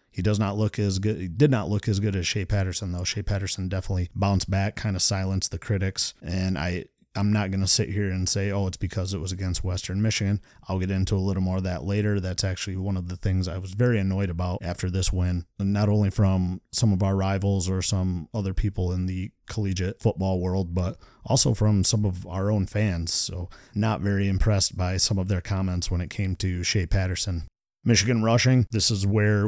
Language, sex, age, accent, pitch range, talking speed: English, male, 30-49, American, 95-105 Hz, 225 wpm